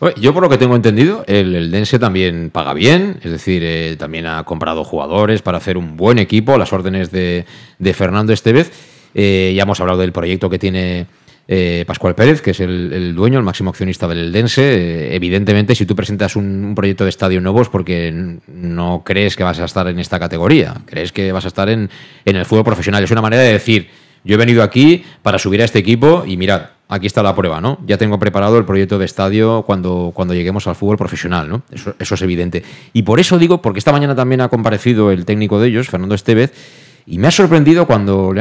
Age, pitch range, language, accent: 30-49, 95-130 Hz, Spanish, Spanish